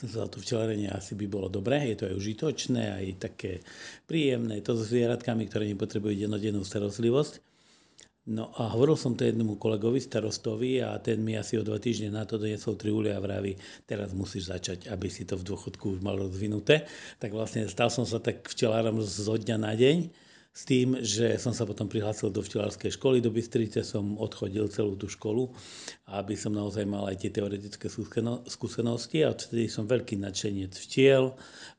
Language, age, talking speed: Slovak, 50-69, 180 wpm